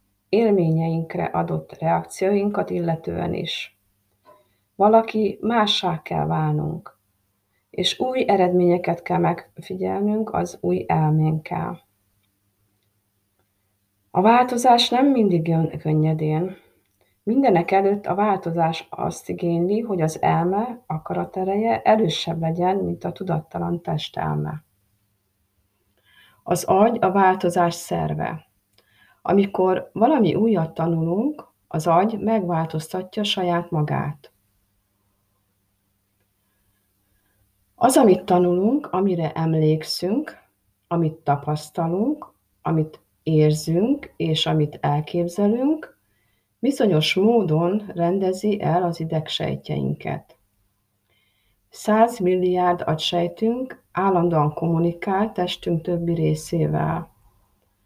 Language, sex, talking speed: Hungarian, female, 80 wpm